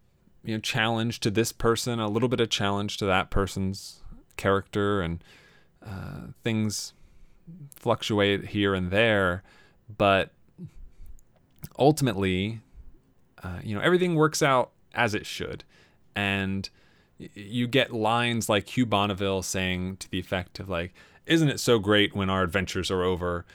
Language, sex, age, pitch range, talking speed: English, male, 20-39, 95-120 Hz, 145 wpm